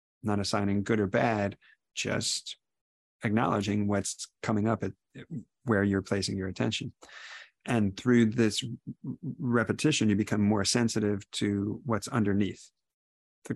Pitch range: 100-115 Hz